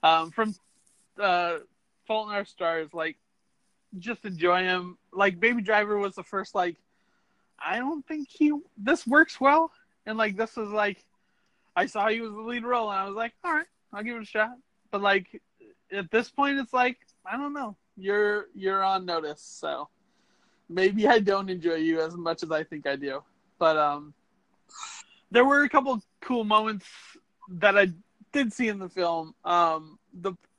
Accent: American